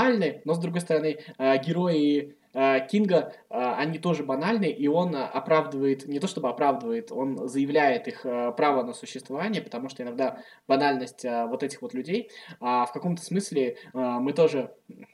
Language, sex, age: Russian, male, 20-39